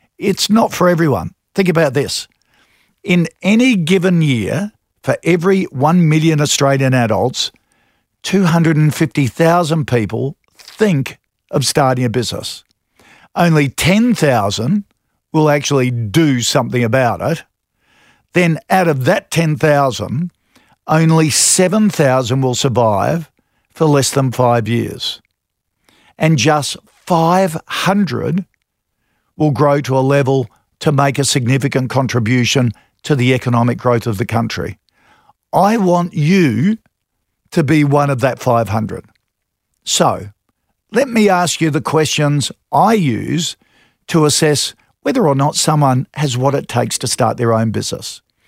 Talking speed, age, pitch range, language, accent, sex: 125 wpm, 50-69, 125-165 Hz, English, Australian, male